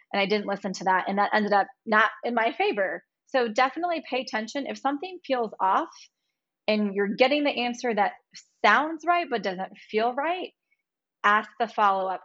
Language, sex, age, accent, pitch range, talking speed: English, female, 20-39, American, 195-230 Hz, 180 wpm